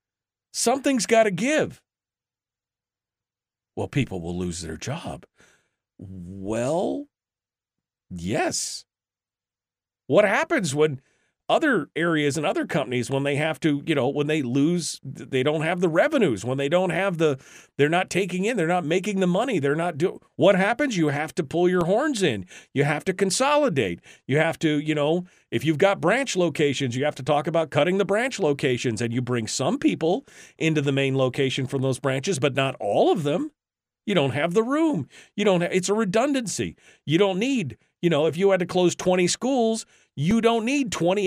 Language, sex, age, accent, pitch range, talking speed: English, male, 40-59, American, 125-195 Hz, 185 wpm